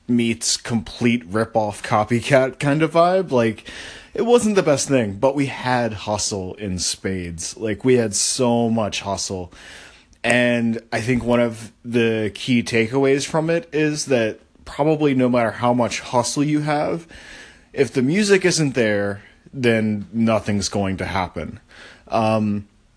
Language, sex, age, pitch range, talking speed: English, male, 20-39, 105-125 Hz, 145 wpm